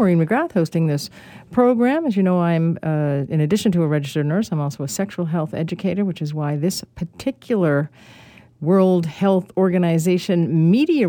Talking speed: 170 wpm